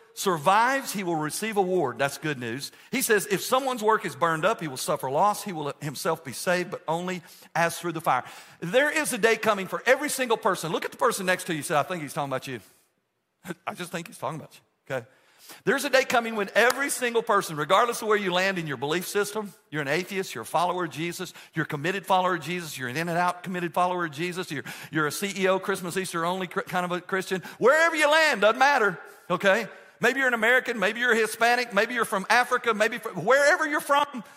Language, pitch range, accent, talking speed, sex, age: English, 170-230 Hz, American, 240 wpm, male, 50-69